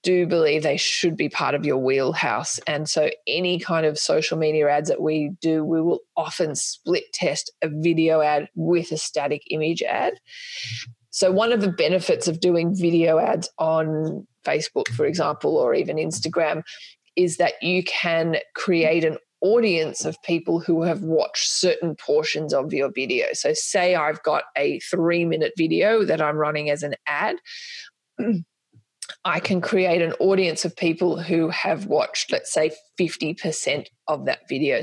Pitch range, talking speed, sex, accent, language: 155-185 Hz, 165 wpm, female, Australian, English